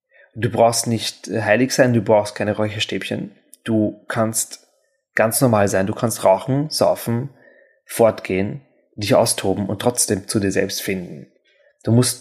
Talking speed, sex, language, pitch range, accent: 145 wpm, male, German, 105-125 Hz, German